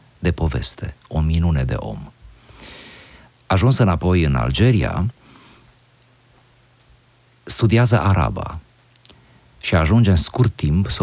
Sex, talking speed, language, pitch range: male, 100 wpm, Romanian, 75-110 Hz